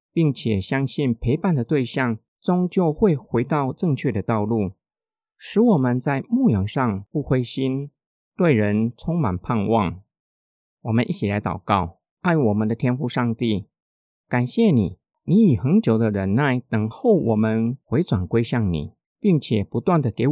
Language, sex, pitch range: Chinese, male, 100-140 Hz